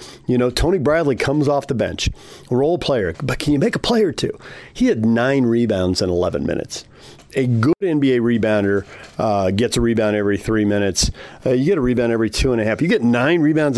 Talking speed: 220 wpm